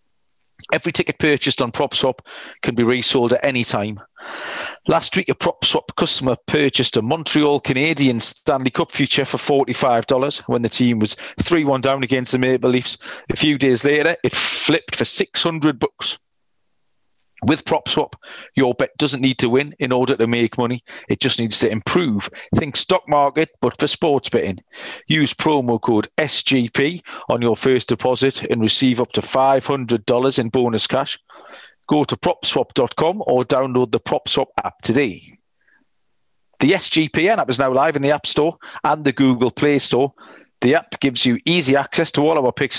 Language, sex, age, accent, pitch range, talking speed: English, male, 40-59, British, 120-145 Hz, 165 wpm